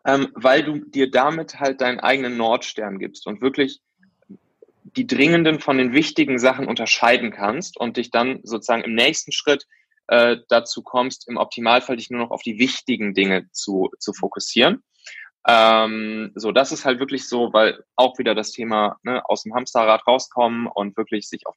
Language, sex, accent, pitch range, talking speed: German, male, German, 110-145 Hz, 175 wpm